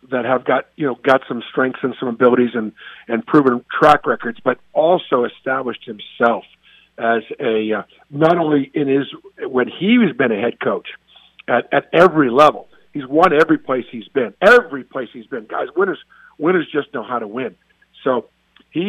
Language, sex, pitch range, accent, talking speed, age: English, male, 135-160 Hz, American, 185 wpm, 50-69